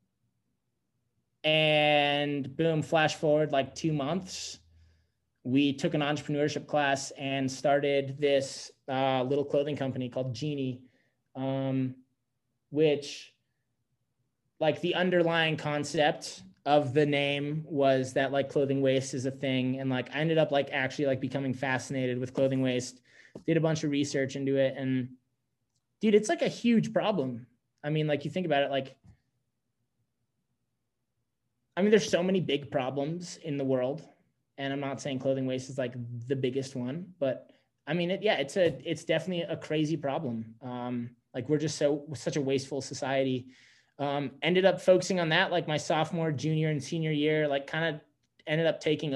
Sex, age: male, 20-39